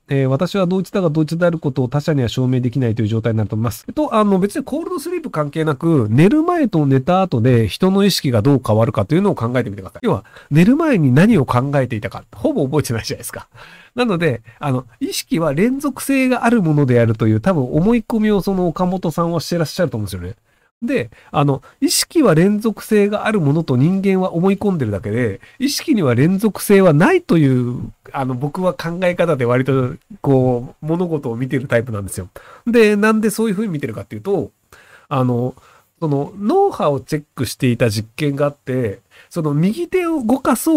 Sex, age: male, 40-59